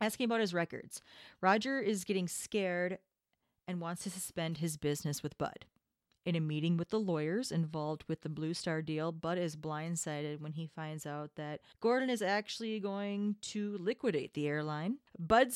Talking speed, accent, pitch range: 175 wpm, American, 165-210 Hz